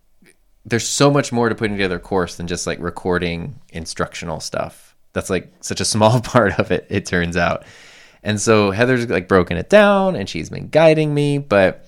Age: 20-39